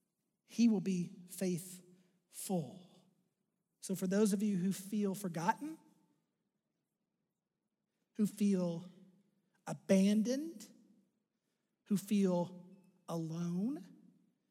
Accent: American